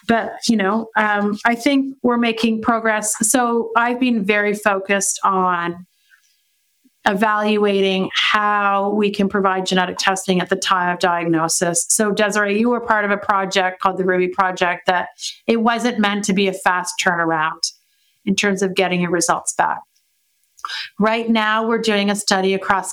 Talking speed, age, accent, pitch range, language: 160 wpm, 40-59, American, 190-225 Hz, English